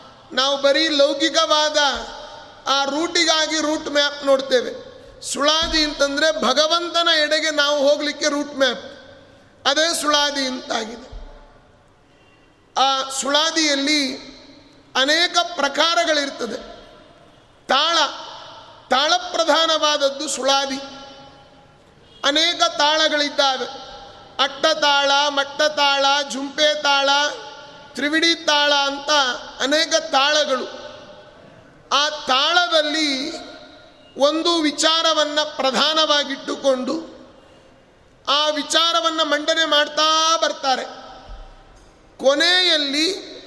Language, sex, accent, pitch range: Kannada, male, native, 275-315 Hz